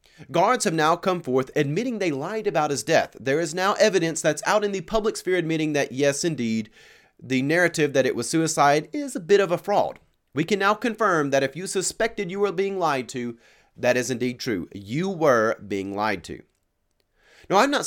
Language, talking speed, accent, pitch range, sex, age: English, 210 wpm, American, 130-195 Hz, male, 30-49